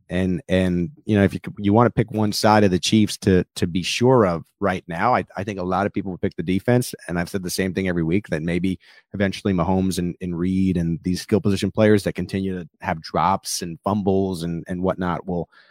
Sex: male